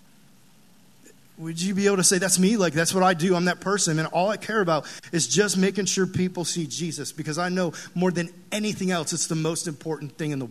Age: 30-49